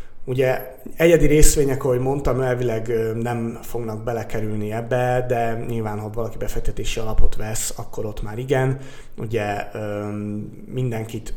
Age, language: 30-49, Hungarian